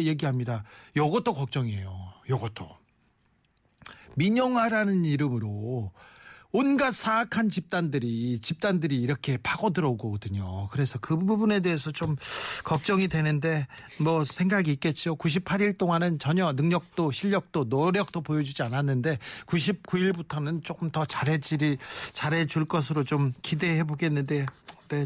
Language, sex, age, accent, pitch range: Korean, male, 40-59, native, 145-200 Hz